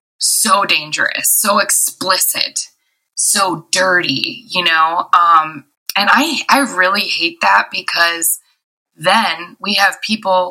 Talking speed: 115 wpm